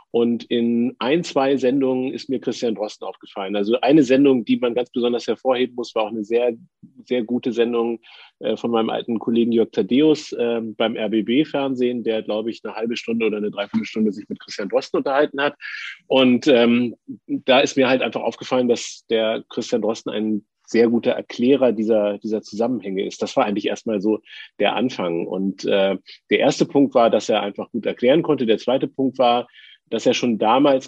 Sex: male